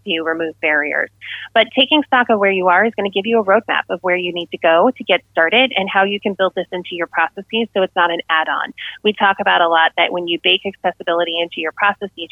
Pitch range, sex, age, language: 175-210 Hz, female, 30-49, English